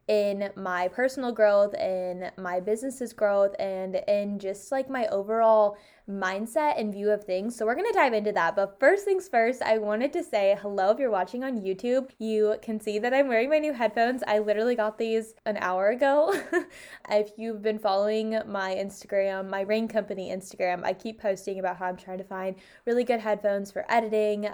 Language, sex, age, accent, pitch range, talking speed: English, female, 10-29, American, 195-230 Hz, 195 wpm